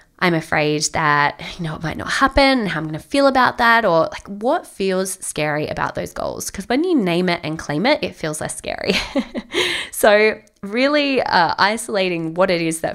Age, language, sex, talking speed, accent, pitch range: 20-39, English, female, 210 wpm, Australian, 155-205 Hz